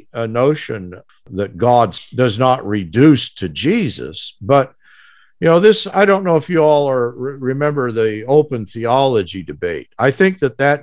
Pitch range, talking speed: 115-165 Hz, 155 wpm